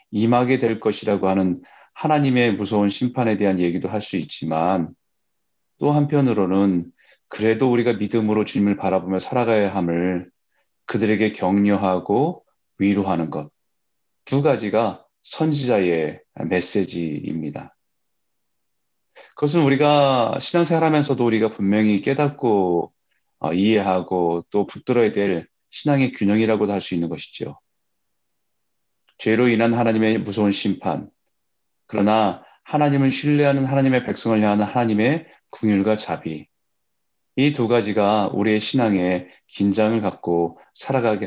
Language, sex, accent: Korean, male, native